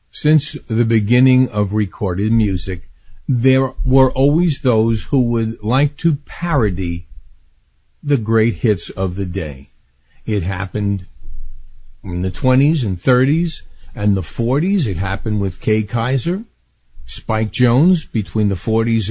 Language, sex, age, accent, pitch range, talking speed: English, male, 50-69, American, 80-130 Hz, 130 wpm